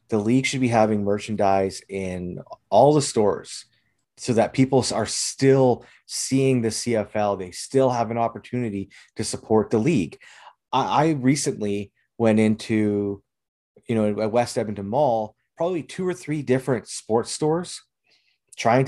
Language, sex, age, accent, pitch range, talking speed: English, male, 30-49, American, 105-135 Hz, 145 wpm